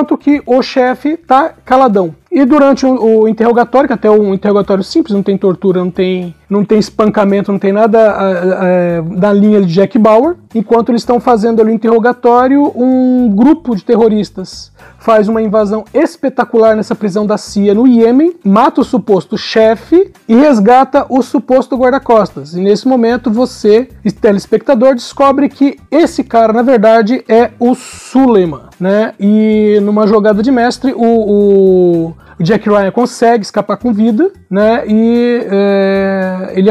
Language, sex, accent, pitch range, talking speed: Portuguese, male, Brazilian, 205-250 Hz, 160 wpm